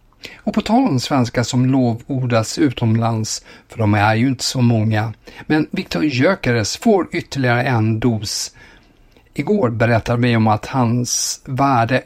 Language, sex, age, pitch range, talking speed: Swedish, male, 50-69, 115-140 Hz, 145 wpm